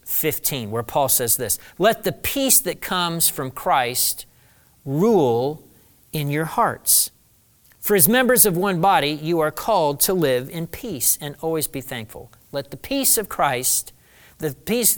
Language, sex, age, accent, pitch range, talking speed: English, male, 50-69, American, 130-205 Hz, 160 wpm